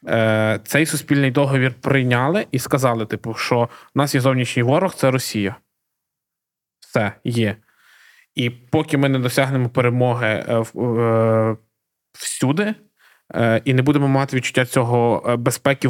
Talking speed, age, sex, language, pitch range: 130 wpm, 20-39, male, Ukrainian, 120-150 Hz